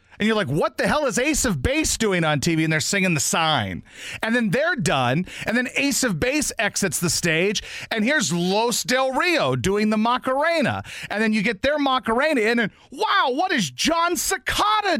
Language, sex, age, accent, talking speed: English, male, 40-59, American, 205 wpm